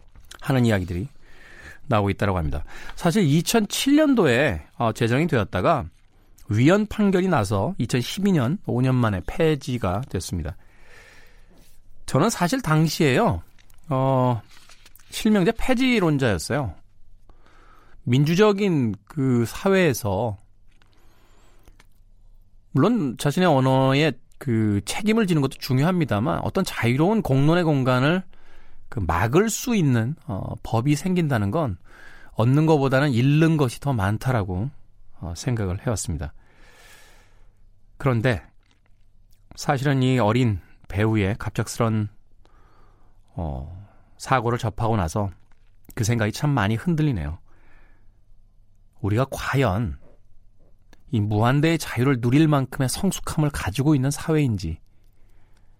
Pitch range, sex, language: 100-140 Hz, male, Korean